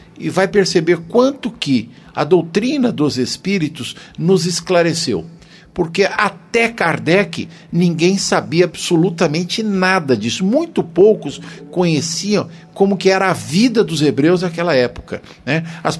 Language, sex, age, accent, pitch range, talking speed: Portuguese, male, 60-79, Brazilian, 155-195 Hz, 125 wpm